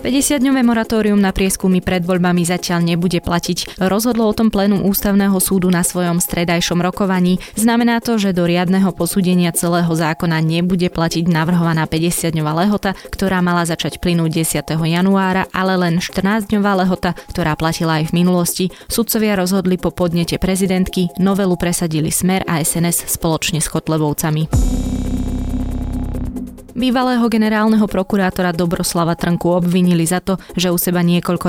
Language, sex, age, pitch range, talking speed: Slovak, female, 20-39, 165-185 Hz, 135 wpm